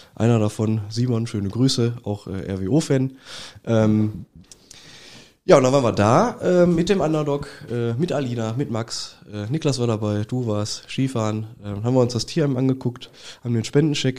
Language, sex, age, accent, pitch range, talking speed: German, male, 20-39, German, 110-125 Hz, 175 wpm